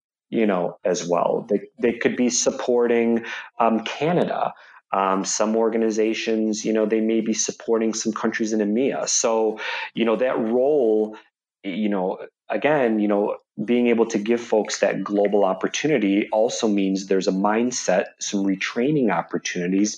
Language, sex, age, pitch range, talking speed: English, male, 30-49, 100-120 Hz, 150 wpm